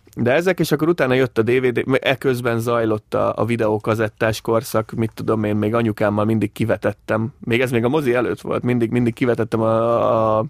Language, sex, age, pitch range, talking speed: Hungarian, male, 20-39, 105-120 Hz, 190 wpm